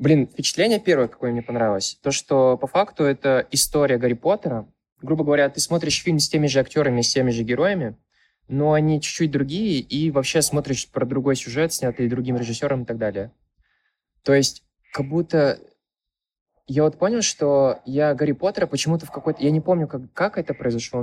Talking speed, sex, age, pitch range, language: 185 wpm, male, 20-39, 125-155 Hz, Russian